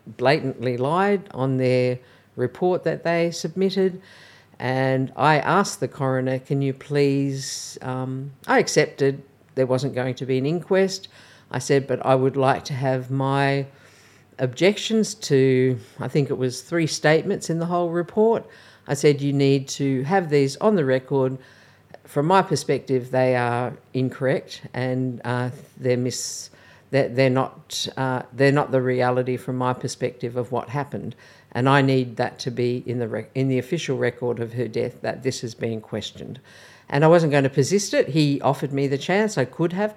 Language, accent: English, Australian